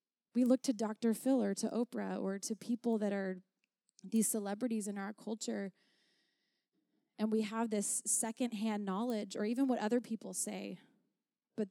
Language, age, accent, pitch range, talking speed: English, 20-39, American, 200-245 Hz, 160 wpm